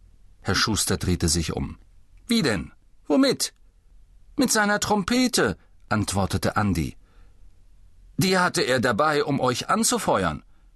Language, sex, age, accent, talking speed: German, male, 50-69, German, 110 wpm